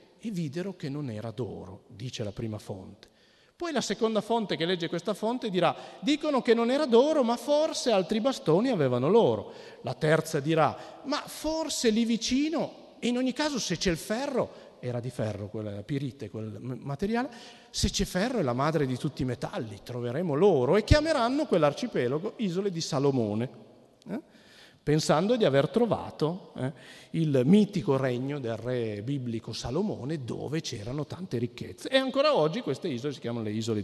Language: Italian